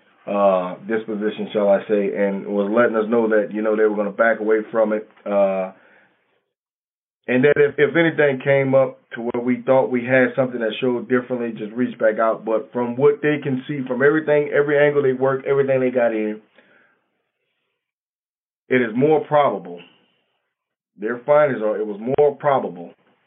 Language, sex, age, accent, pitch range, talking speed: English, male, 30-49, American, 105-140 Hz, 180 wpm